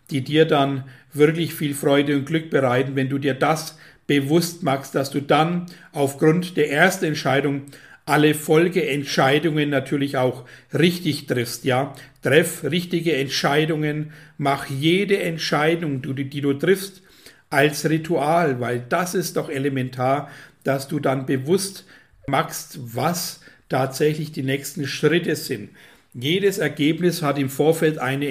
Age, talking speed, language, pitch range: 60-79, 130 wpm, German, 140-165 Hz